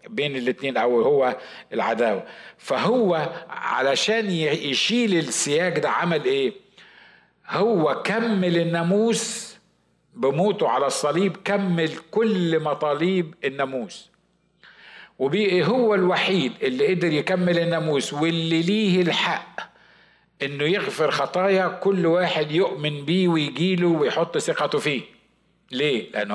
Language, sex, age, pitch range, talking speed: Arabic, male, 50-69, 145-190 Hz, 105 wpm